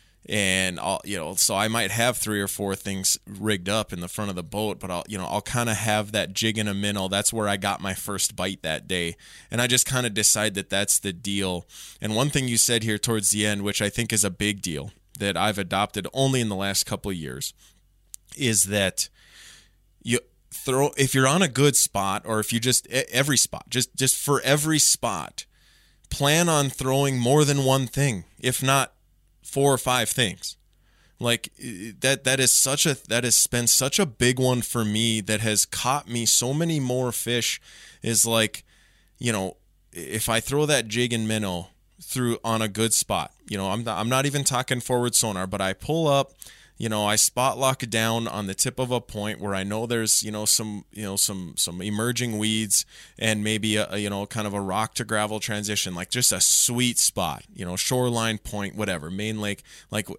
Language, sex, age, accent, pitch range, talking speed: English, male, 20-39, American, 100-125 Hz, 215 wpm